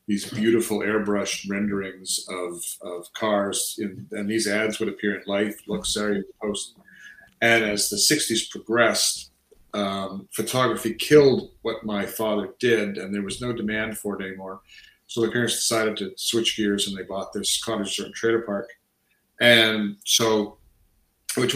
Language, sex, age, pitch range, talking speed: English, male, 40-59, 100-115 Hz, 160 wpm